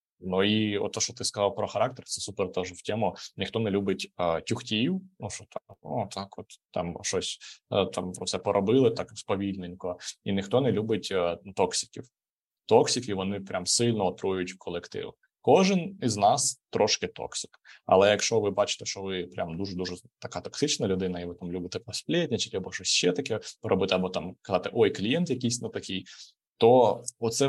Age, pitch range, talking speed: 20-39, 90-120 Hz, 180 wpm